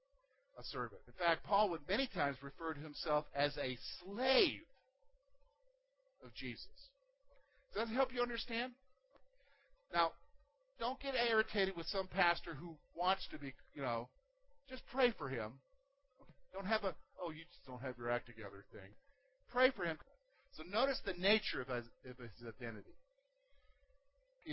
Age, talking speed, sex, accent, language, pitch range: 50-69, 150 wpm, male, American, English, 165-275 Hz